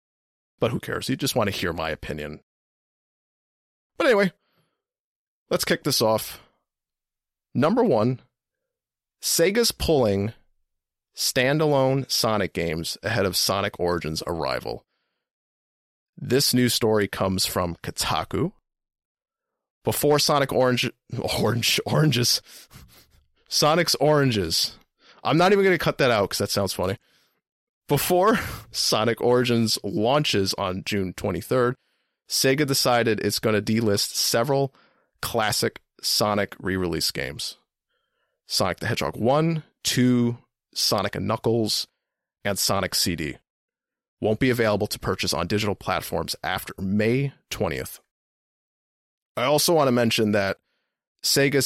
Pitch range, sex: 95-135 Hz, male